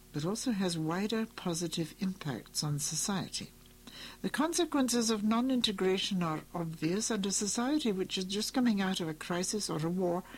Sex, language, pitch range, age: female, English, 160-210 Hz, 60-79